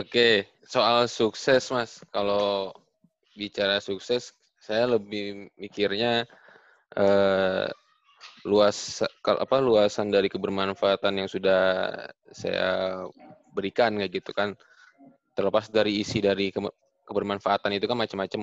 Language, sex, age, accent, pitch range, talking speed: Indonesian, male, 20-39, native, 95-110 Hz, 105 wpm